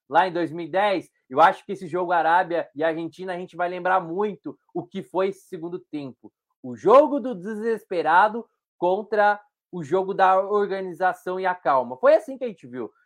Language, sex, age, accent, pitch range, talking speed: Portuguese, male, 20-39, Brazilian, 155-195 Hz, 185 wpm